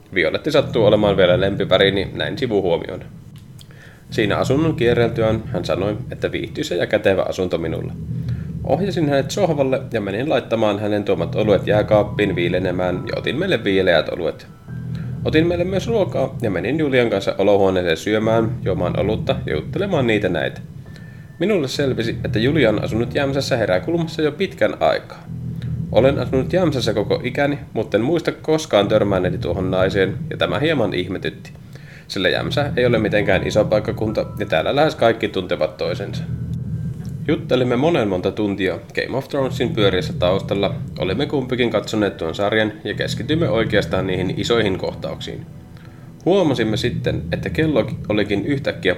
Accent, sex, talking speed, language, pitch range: native, male, 140 wpm, Finnish, 105-150 Hz